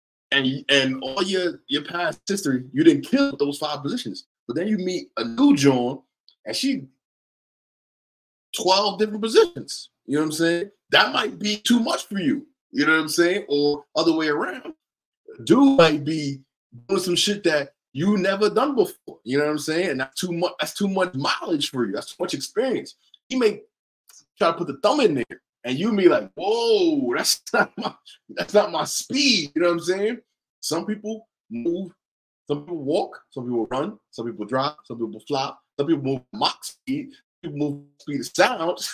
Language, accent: English, American